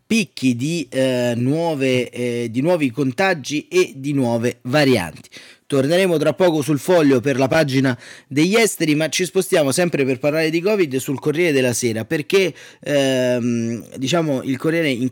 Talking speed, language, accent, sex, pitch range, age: 160 wpm, Italian, native, male, 125-150 Hz, 30-49